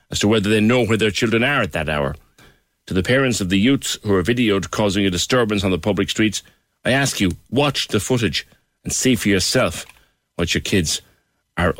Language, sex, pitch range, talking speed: English, male, 95-125 Hz, 215 wpm